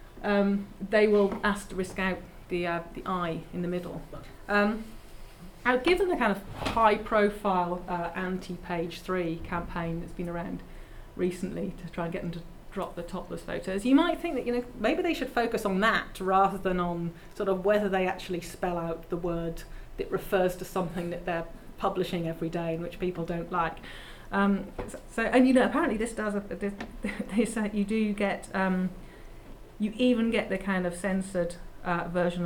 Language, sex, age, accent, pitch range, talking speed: English, female, 30-49, British, 170-205 Hz, 190 wpm